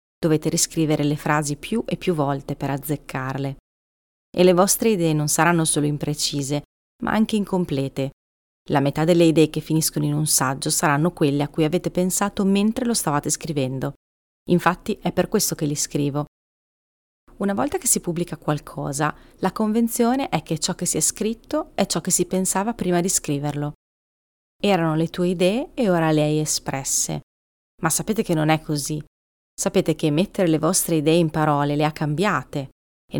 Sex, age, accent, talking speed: female, 30-49, native, 175 wpm